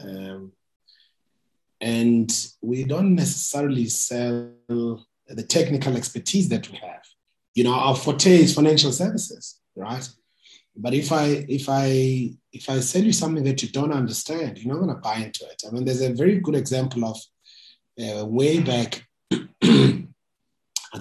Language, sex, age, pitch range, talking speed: English, male, 30-49, 110-140 Hz, 150 wpm